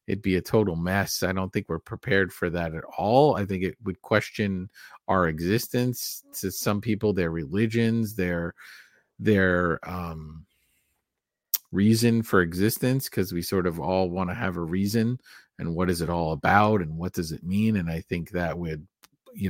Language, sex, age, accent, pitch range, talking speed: English, male, 40-59, American, 90-110 Hz, 180 wpm